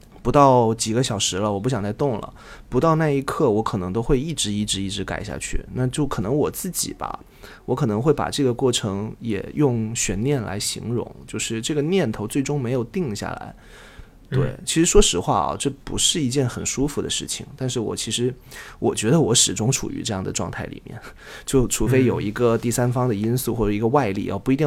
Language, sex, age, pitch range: Chinese, male, 20-39, 105-130 Hz